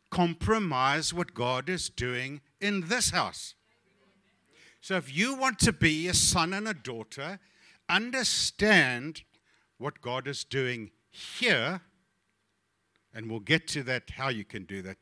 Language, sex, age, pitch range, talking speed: English, male, 60-79, 110-165 Hz, 140 wpm